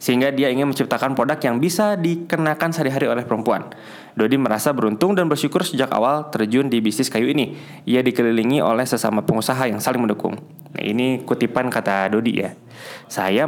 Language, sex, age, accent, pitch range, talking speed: Indonesian, male, 20-39, native, 110-145 Hz, 170 wpm